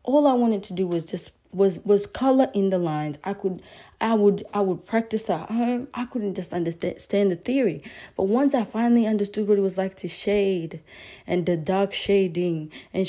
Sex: female